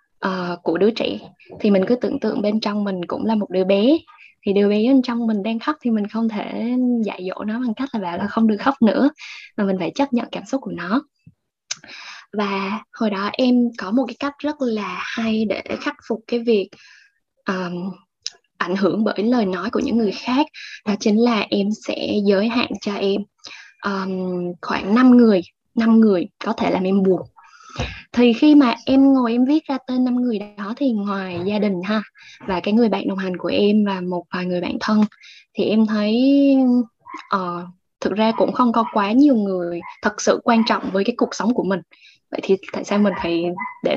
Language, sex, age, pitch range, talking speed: Vietnamese, female, 10-29, 195-245 Hz, 215 wpm